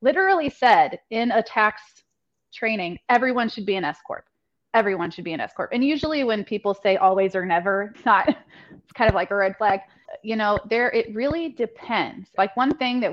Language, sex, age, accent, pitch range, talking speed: English, female, 30-49, American, 190-220 Hz, 205 wpm